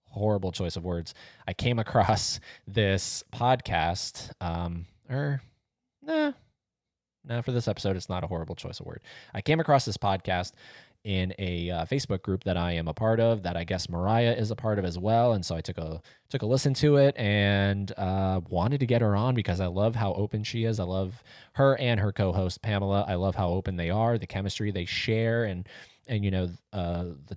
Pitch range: 90-115 Hz